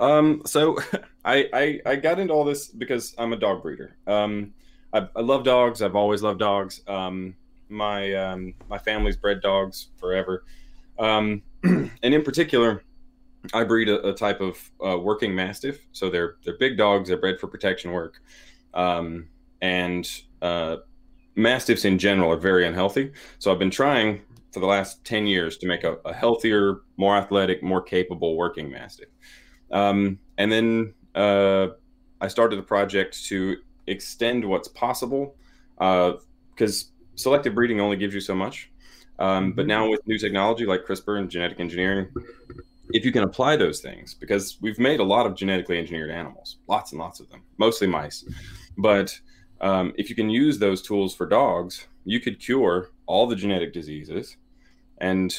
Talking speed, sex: 170 wpm, male